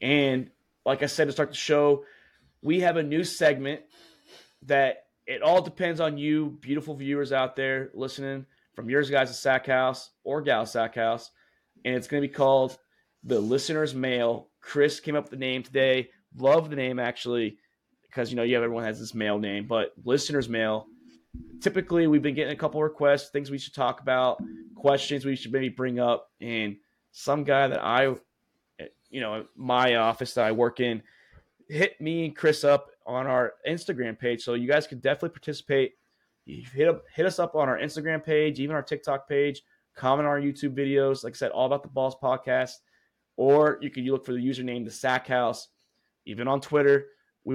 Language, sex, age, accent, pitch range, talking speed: English, male, 30-49, American, 125-145 Hz, 195 wpm